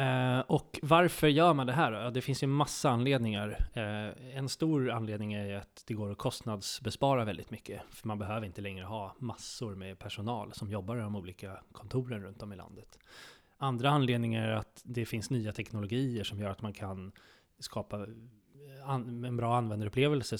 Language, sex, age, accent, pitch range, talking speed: Swedish, male, 20-39, native, 105-130 Hz, 175 wpm